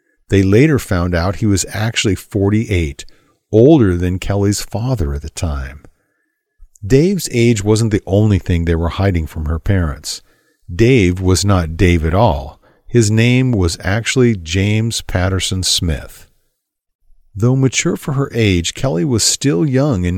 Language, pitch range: English, 90-120 Hz